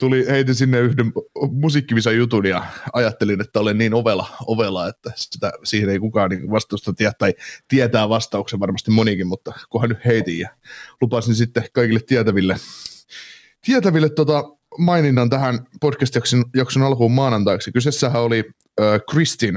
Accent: native